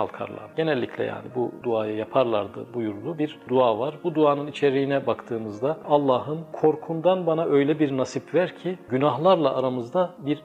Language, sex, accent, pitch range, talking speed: Turkish, male, native, 125-165 Hz, 145 wpm